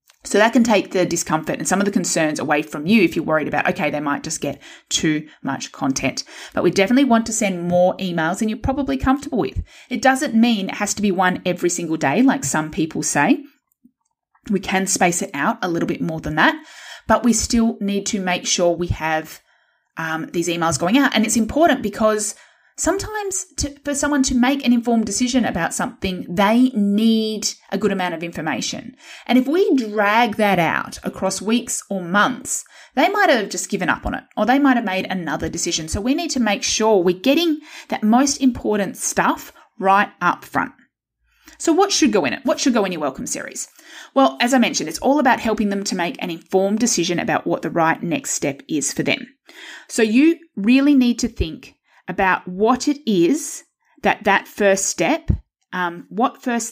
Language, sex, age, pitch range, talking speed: English, female, 30-49, 180-260 Hz, 205 wpm